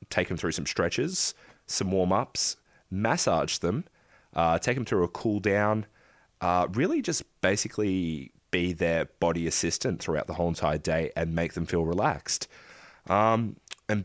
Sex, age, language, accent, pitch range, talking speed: male, 20-39, English, Australian, 80-95 Hz, 160 wpm